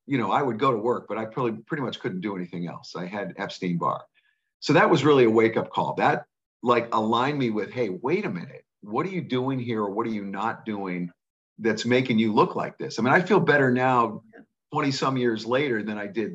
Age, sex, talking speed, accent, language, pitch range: 50-69, male, 245 wpm, American, English, 105-135 Hz